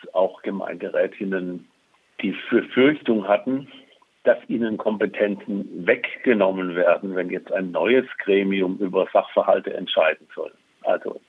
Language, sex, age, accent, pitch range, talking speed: German, male, 60-79, German, 95-115 Hz, 110 wpm